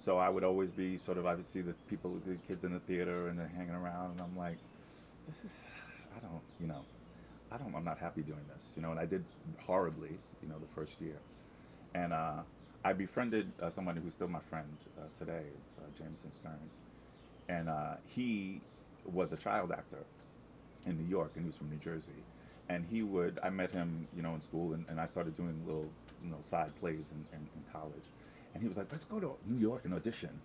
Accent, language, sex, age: American, English, male, 30-49